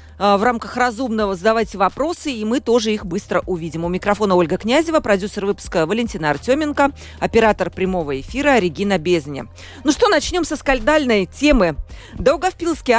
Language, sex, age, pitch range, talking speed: Russian, female, 40-59, 200-280 Hz, 145 wpm